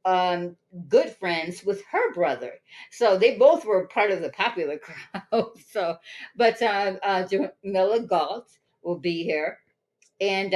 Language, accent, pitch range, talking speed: English, American, 170-200 Hz, 140 wpm